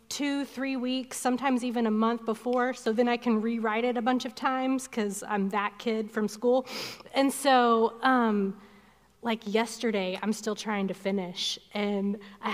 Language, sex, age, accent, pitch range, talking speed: English, female, 30-49, American, 220-260 Hz, 170 wpm